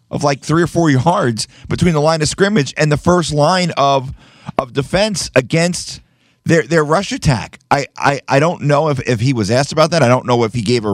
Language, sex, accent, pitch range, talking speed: English, male, American, 125-165 Hz, 230 wpm